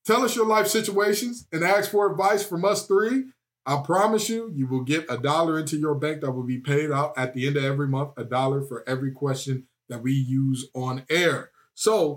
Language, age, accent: English, 20-39, American